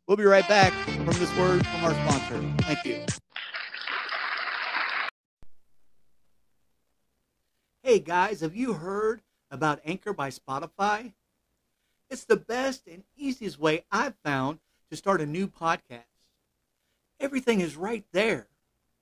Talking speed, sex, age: 120 wpm, male, 50-69